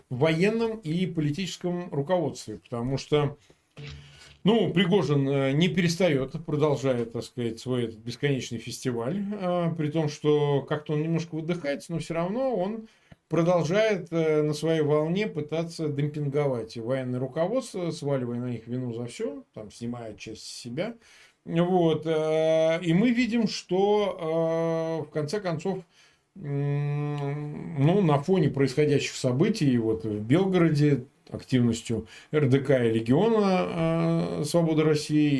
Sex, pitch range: male, 135-180 Hz